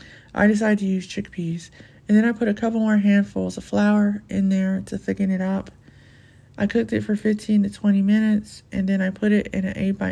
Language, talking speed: English, 225 wpm